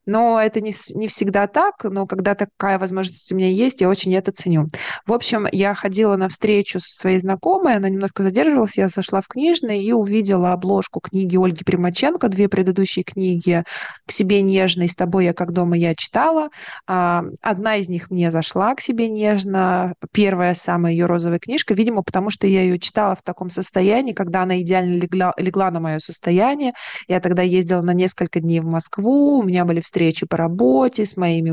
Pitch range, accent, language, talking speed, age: 180-210 Hz, native, Russian, 190 wpm, 20-39